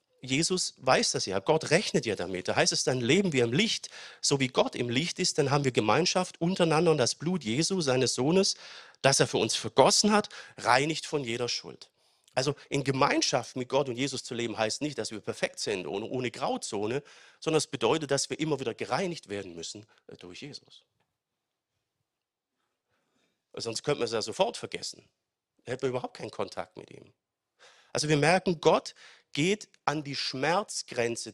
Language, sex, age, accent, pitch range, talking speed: German, male, 40-59, German, 120-165 Hz, 185 wpm